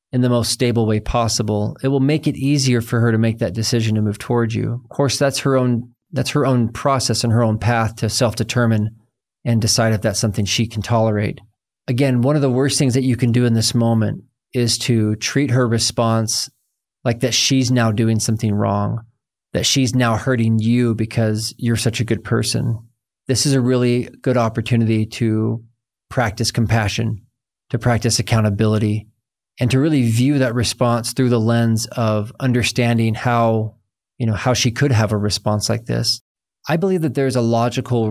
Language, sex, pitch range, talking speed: English, male, 110-125 Hz, 185 wpm